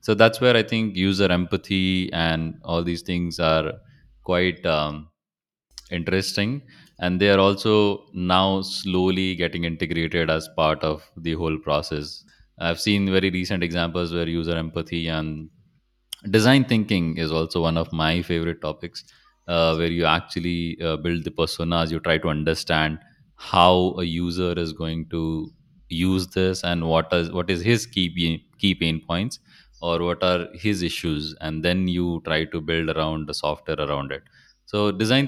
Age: 30-49